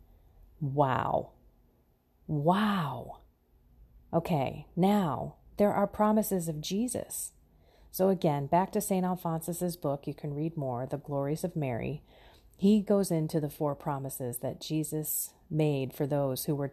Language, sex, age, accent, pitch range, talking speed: English, female, 30-49, American, 150-195 Hz, 135 wpm